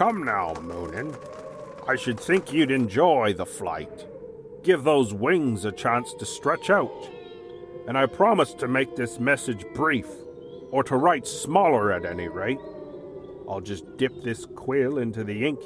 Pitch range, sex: 110-160 Hz, male